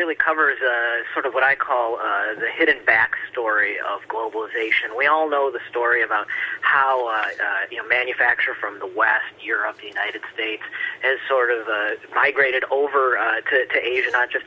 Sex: male